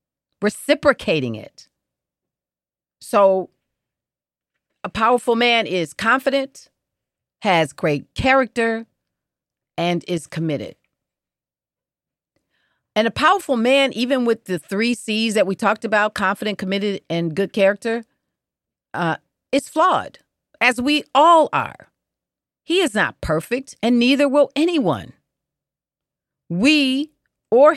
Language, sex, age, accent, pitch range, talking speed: English, female, 40-59, American, 165-245 Hz, 105 wpm